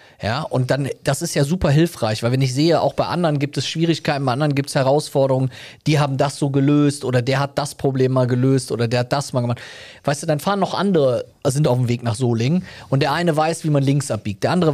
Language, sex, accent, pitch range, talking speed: German, male, German, 120-145 Hz, 255 wpm